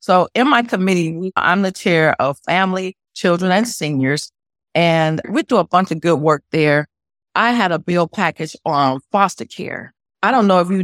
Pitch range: 155-200 Hz